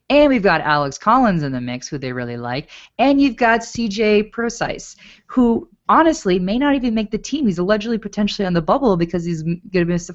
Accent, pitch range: American, 145-200 Hz